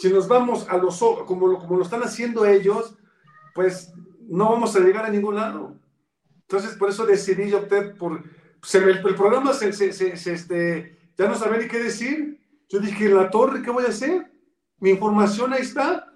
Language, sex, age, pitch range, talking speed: Spanish, male, 50-69, 180-220 Hz, 205 wpm